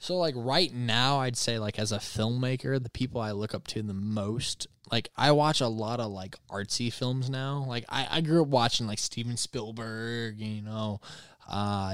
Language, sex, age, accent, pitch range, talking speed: English, male, 20-39, American, 105-125 Hz, 200 wpm